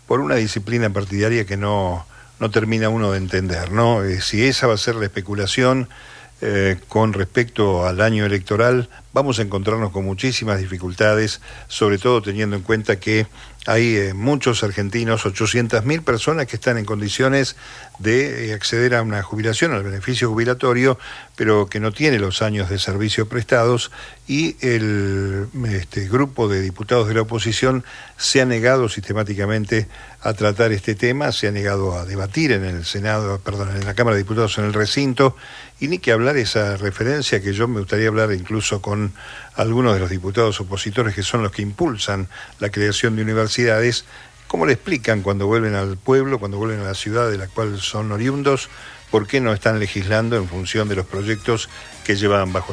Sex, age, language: male, 50-69, Spanish